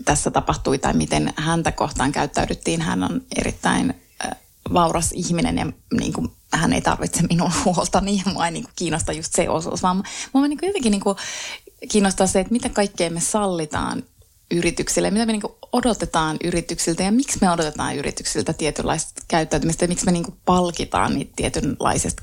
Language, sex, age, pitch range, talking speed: Finnish, female, 20-39, 165-210 Hz, 160 wpm